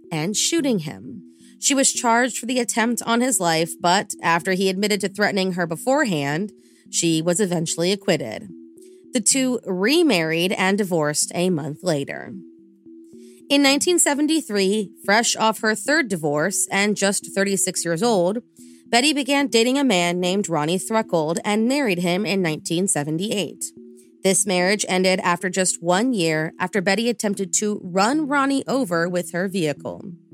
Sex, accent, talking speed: female, American, 145 wpm